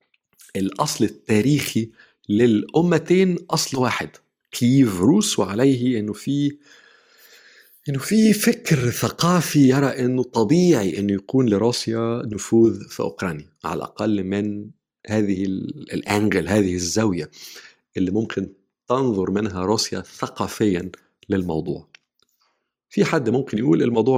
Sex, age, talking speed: male, 50-69, 105 wpm